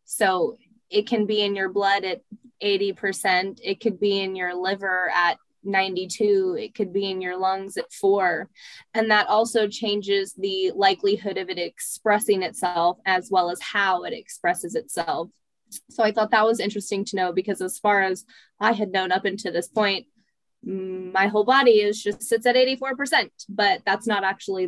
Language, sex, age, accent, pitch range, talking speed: English, female, 10-29, American, 175-210 Hz, 175 wpm